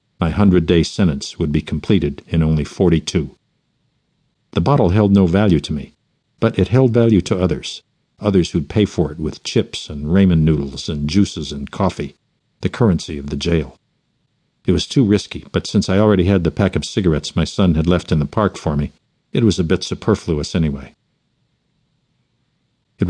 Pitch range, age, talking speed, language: 80-95 Hz, 60-79, 180 wpm, English